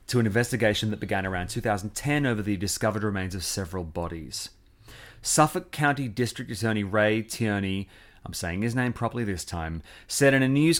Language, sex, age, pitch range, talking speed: English, male, 30-49, 100-130 Hz, 170 wpm